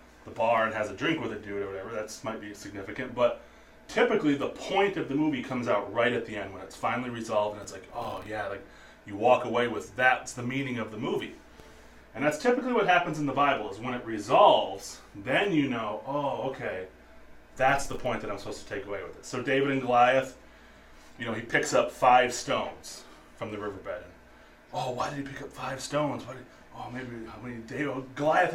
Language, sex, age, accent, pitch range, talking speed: English, male, 30-49, American, 115-170 Hz, 230 wpm